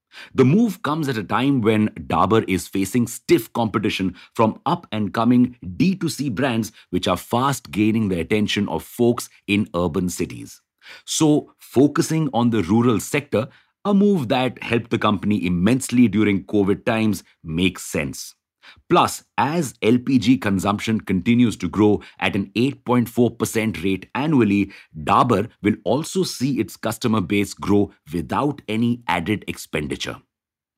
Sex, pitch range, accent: male, 100-125 Hz, Indian